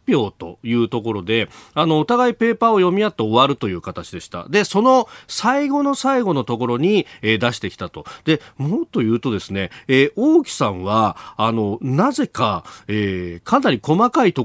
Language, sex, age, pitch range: Japanese, male, 40-59, 110-170 Hz